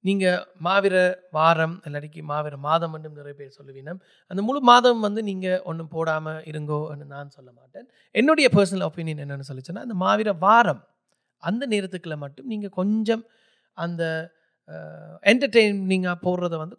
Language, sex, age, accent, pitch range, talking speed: Tamil, male, 30-49, native, 150-210 Hz, 140 wpm